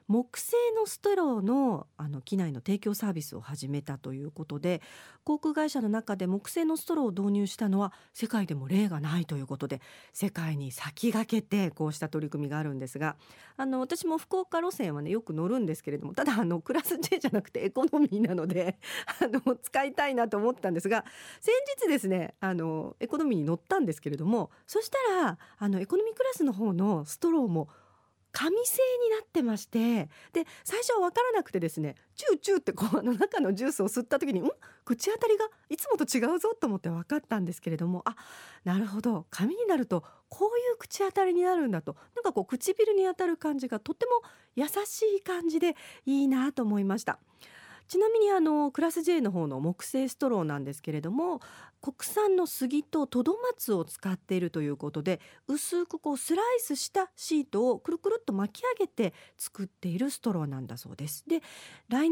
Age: 40-59